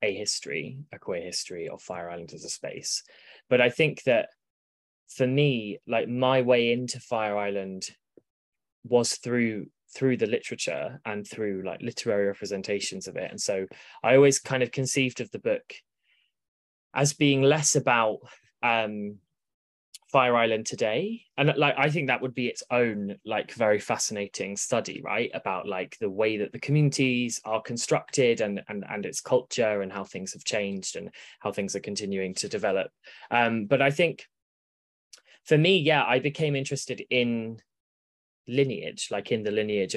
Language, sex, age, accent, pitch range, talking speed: English, male, 20-39, British, 100-135 Hz, 165 wpm